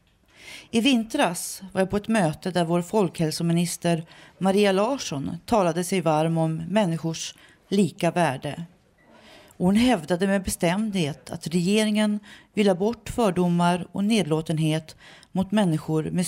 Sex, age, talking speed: female, 40-59, 120 wpm